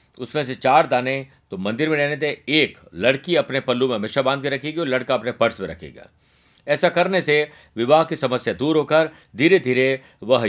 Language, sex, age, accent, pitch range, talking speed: Hindi, male, 50-69, native, 125-165 Hz, 200 wpm